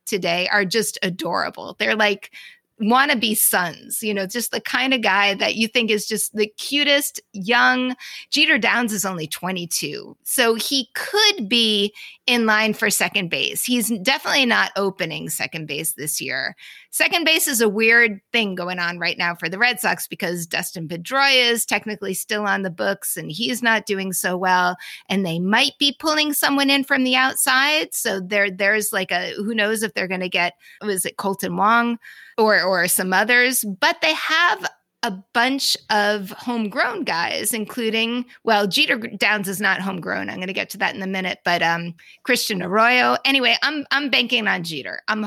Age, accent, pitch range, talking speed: 30-49, American, 195-245 Hz, 185 wpm